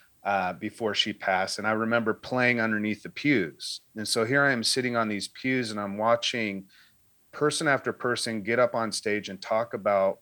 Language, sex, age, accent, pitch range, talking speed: English, male, 30-49, American, 105-125 Hz, 195 wpm